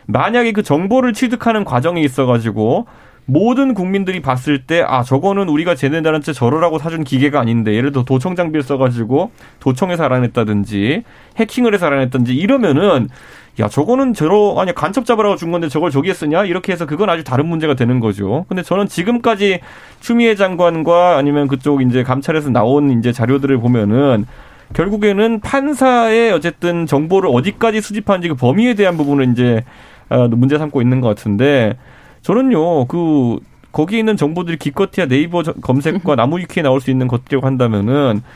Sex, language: male, Korean